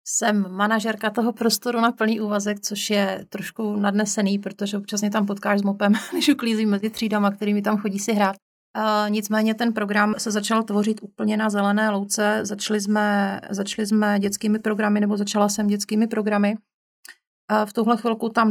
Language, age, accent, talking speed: Czech, 30-49, native, 170 wpm